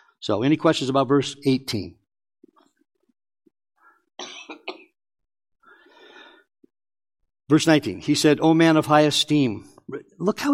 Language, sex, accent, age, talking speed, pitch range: English, male, American, 50-69, 95 wpm, 125-175 Hz